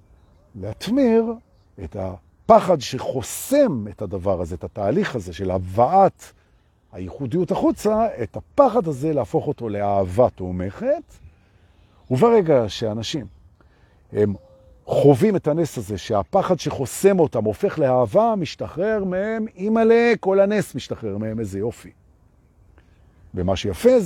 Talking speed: 125 wpm